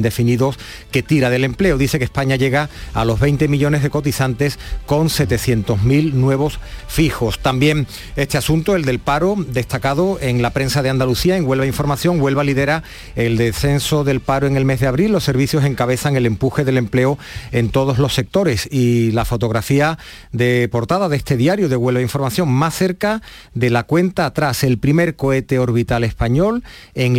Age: 40-59